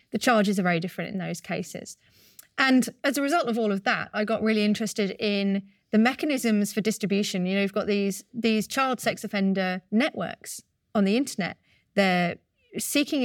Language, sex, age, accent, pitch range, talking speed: English, female, 30-49, British, 190-220 Hz, 180 wpm